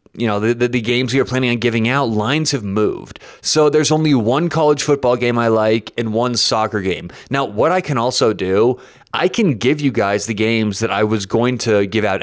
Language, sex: English, male